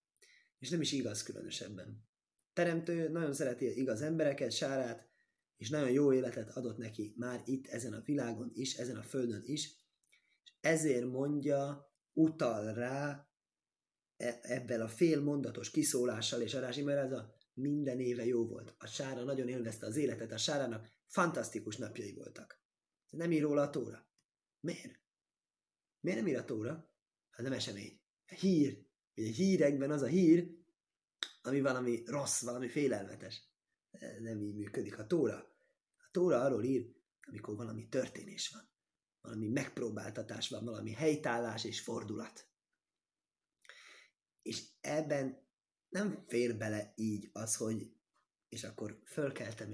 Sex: male